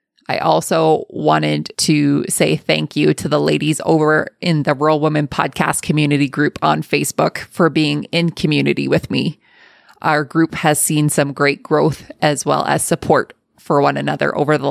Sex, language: female, English